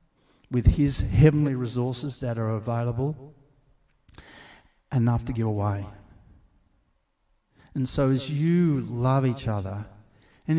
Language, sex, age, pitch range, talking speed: English, male, 50-69, 115-155 Hz, 110 wpm